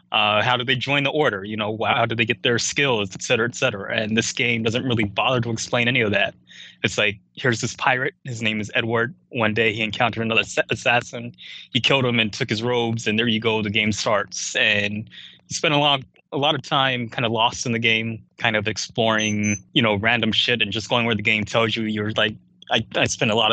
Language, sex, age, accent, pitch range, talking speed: English, male, 20-39, American, 110-125 Hz, 240 wpm